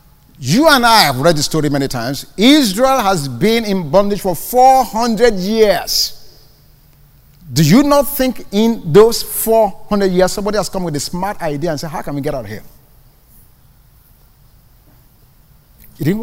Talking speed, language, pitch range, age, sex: 160 wpm, English, 145-240 Hz, 50-69, male